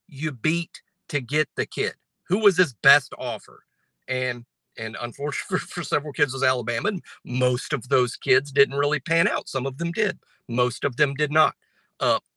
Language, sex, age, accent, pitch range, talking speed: English, male, 50-69, American, 130-175 Hz, 195 wpm